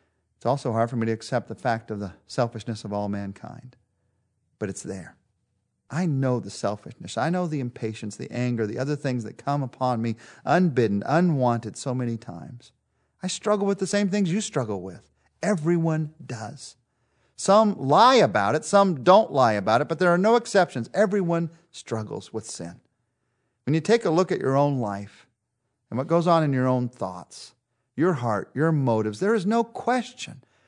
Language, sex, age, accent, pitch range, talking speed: English, male, 40-59, American, 115-170 Hz, 185 wpm